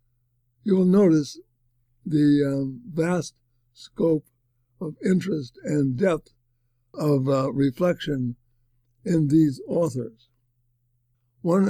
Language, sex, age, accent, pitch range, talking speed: English, male, 60-79, American, 120-150 Hz, 85 wpm